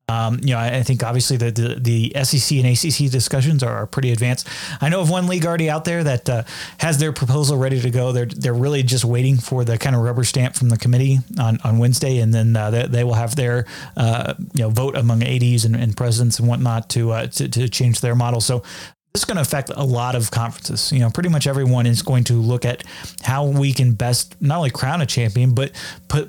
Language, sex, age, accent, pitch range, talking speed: English, male, 30-49, American, 120-145 Hz, 245 wpm